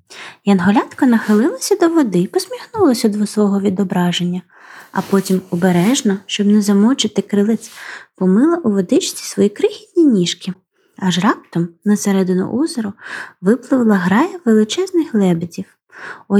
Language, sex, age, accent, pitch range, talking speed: Ukrainian, female, 20-39, native, 190-255 Hz, 115 wpm